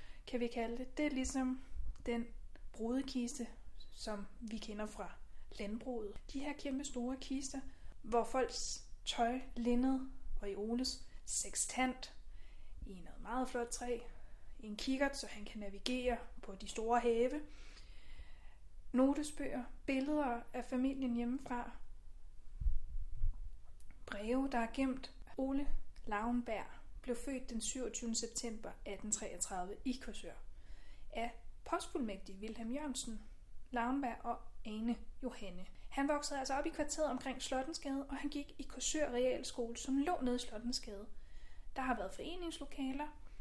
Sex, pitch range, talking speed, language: female, 225-270 Hz, 125 wpm, Danish